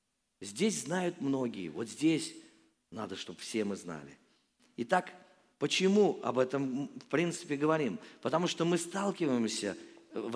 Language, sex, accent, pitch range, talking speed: Russian, male, native, 145-210 Hz, 125 wpm